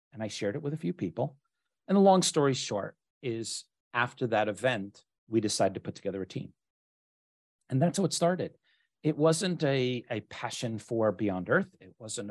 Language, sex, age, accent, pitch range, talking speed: English, male, 40-59, American, 105-145 Hz, 190 wpm